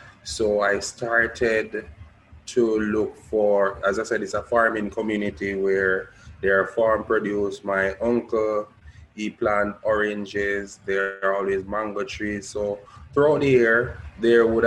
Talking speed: 140 wpm